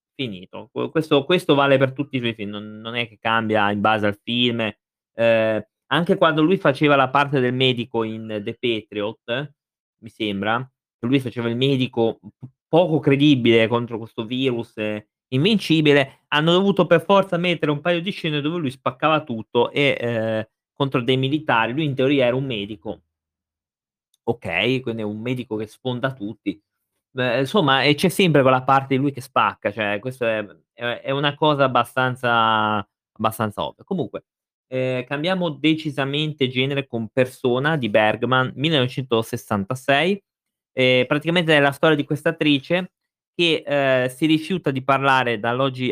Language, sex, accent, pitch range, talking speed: Italian, male, native, 115-145 Hz, 155 wpm